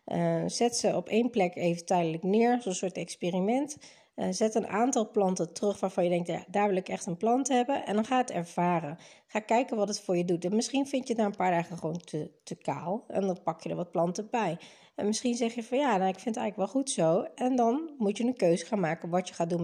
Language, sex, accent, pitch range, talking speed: Dutch, female, Dutch, 180-245 Hz, 270 wpm